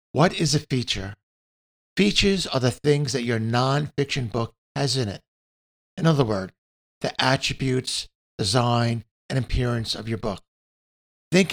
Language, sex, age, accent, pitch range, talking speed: English, male, 50-69, American, 105-140 Hz, 140 wpm